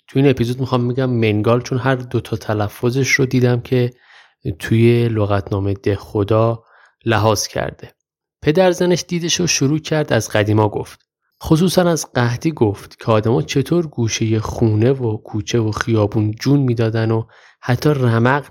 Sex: male